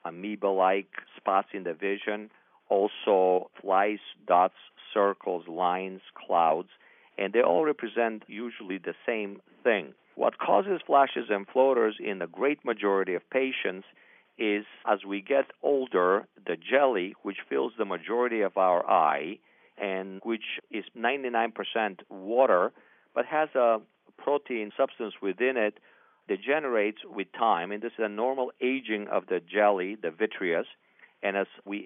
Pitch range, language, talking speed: 100-125 Hz, English, 140 wpm